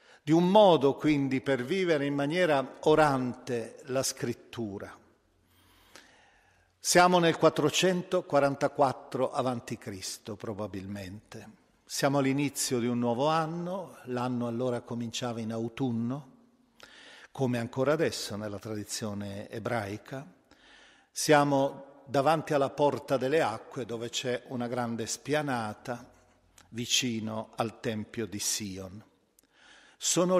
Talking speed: 100 wpm